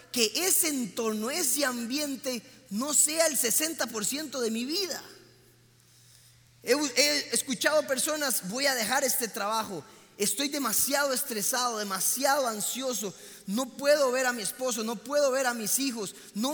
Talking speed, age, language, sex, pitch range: 140 wpm, 30-49, Spanish, male, 205-295 Hz